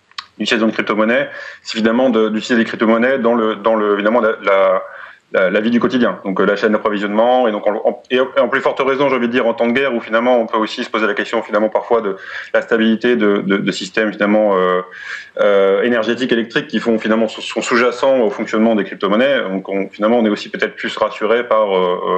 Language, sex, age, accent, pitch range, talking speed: French, male, 30-49, French, 105-120 Hz, 230 wpm